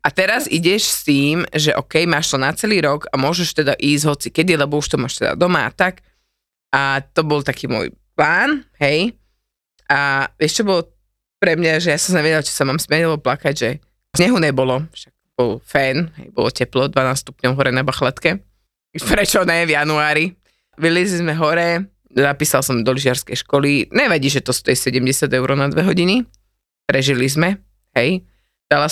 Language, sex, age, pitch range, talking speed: Slovak, female, 20-39, 140-185 Hz, 185 wpm